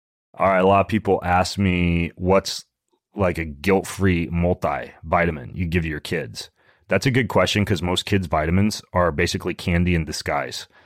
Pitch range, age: 85-100 Hz, 30-49